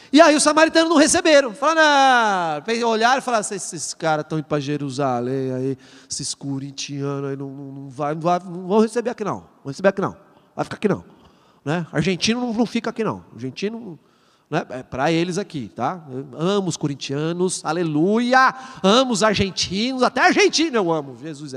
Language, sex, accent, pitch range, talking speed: Portuguese, male, Brazilian, 175-290 Hz, 170 wpm